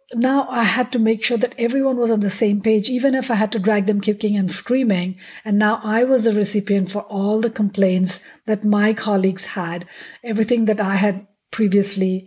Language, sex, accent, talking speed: English, female, Indian, 205 wpm